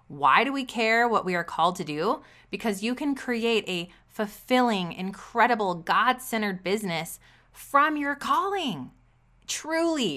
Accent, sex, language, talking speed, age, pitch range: American, female, English, 135 wpm, 20-39, 175-230 Hz